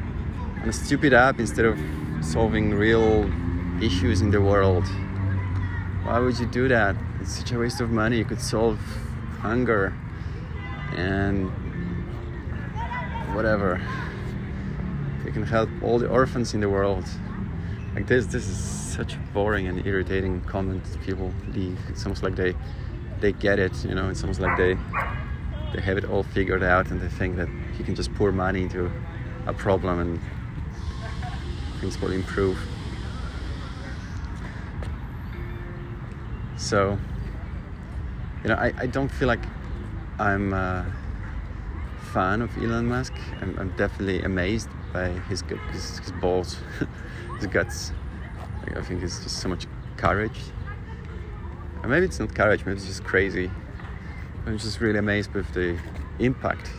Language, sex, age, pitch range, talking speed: English, male, 20-39, 90-105 Hz, 140 wpm